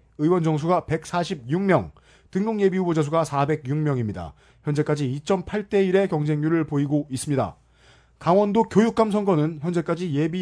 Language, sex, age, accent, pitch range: Korean, male, 30-49, native, 145-195 Hz